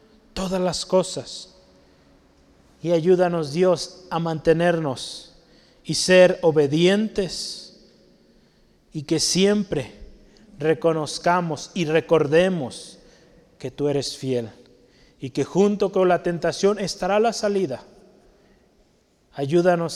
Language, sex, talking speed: Spanish, male, 95 wpm